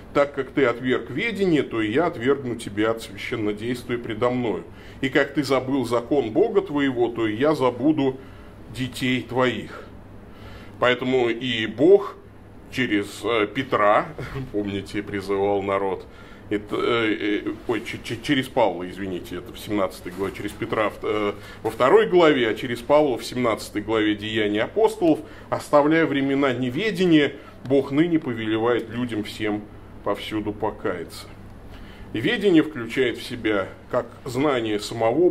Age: 30-49